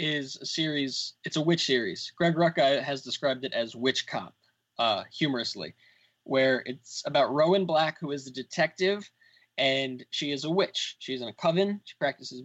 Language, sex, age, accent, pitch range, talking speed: English, male, 20-39, American, 130-155 Hz, 180 wpm